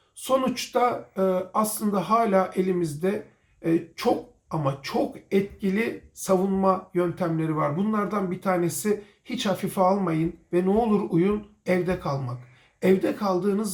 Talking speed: 110 wpm